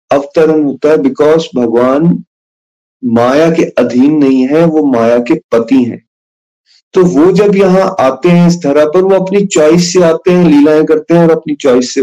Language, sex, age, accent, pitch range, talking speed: Hindi, male, 30-49, native, 135-180 Hz, 185 wpm